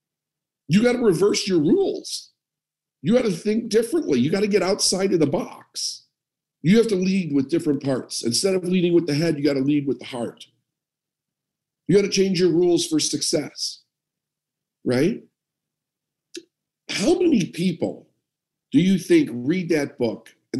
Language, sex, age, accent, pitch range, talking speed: English, male, 50-69, American, 135-195 Hz, 170 wpm